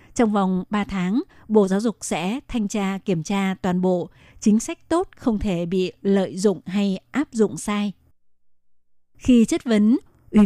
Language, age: Vietnamese, 20-39